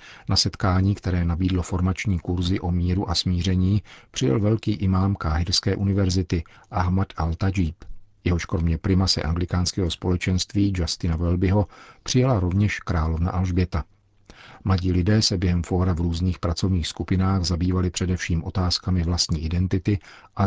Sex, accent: male, native